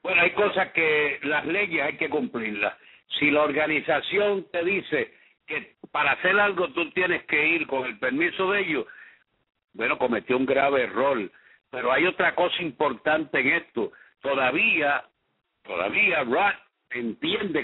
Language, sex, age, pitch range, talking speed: English, male, 60-79, 140-190 Hz, 145 wpm